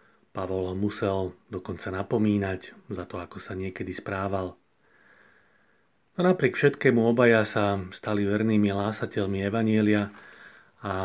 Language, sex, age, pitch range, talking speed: Slovak, male, 40-59, 95-115 Hz, 110 wpm